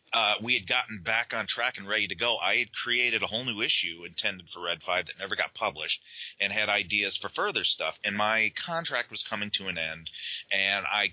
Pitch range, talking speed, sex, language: 95-110 Hz, 225 wpm, male, English